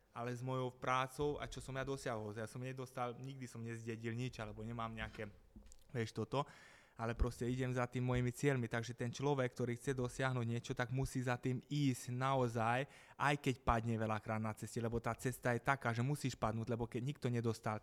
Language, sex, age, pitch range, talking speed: Slovak, male, 20-39, 110-125 Hz, 200 wpm